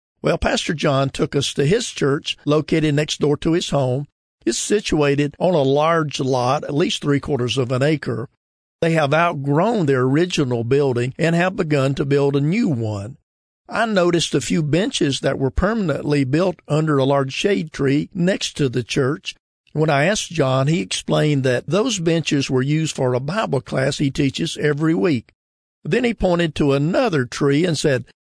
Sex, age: male, 50-69